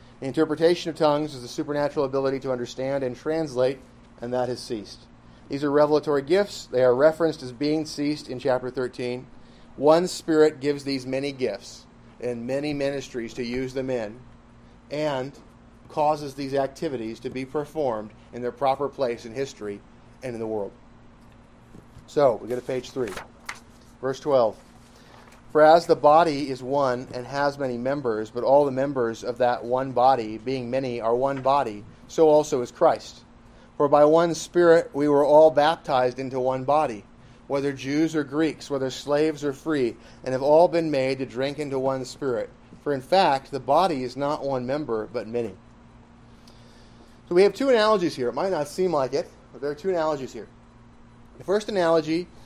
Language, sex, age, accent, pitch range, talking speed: English, male, 40-59, American, 125-150 Hz, 180 wpm